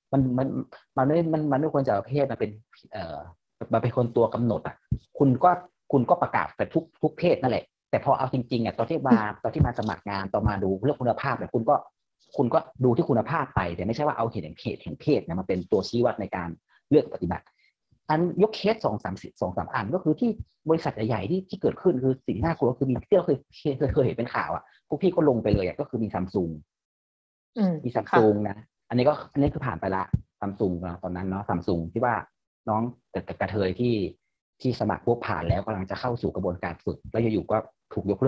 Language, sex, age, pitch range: Thai, male, 30-49, 105-145 Hz